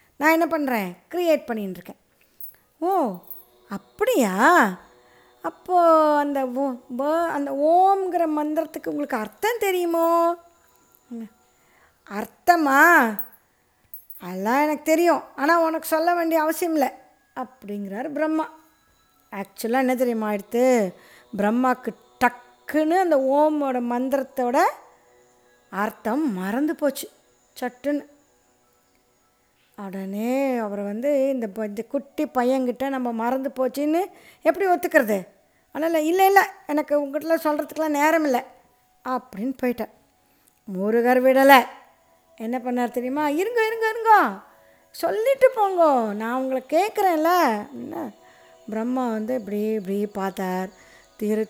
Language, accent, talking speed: Tamil, native, 95 wpm